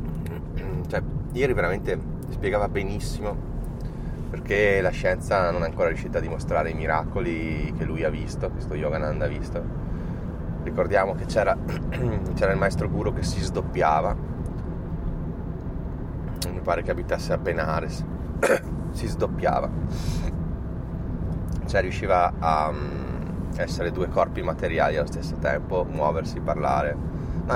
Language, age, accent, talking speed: Italian, 30-49, native, 115 wpm